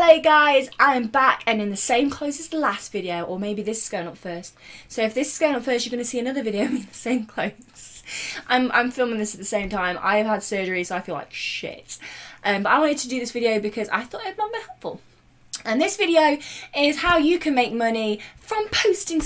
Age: 20-39